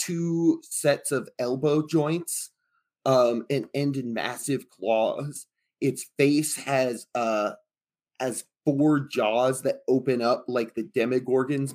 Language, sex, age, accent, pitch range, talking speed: English, male, 20-39, American, 120-140 Hz, 125 wpm